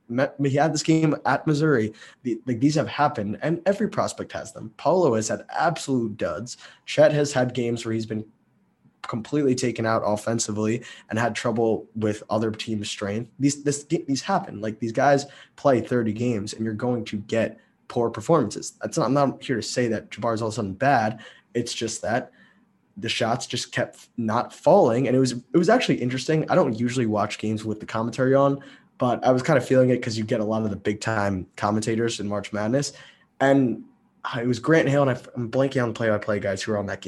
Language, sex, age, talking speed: English, male, 20-39, 215 wpm